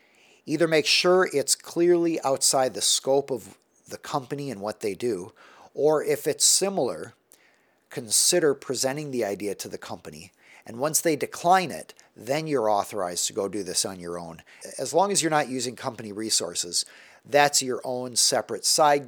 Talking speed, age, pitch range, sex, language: 170 wpm, 50-69, 120-150 Hz, male, English